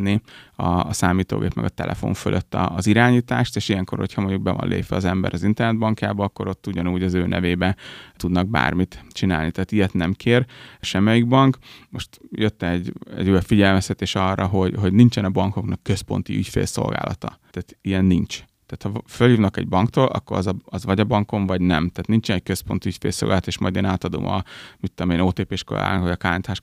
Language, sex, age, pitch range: Hungarian, male, 30-49, 90-105 Hz